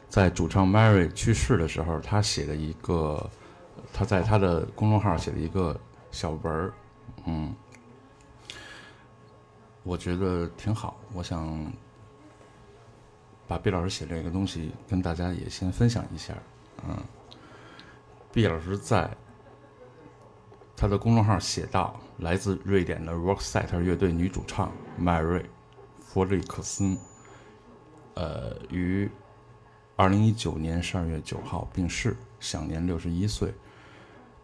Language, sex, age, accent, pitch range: Chinese, male, 60-79, native, 85-105 Hz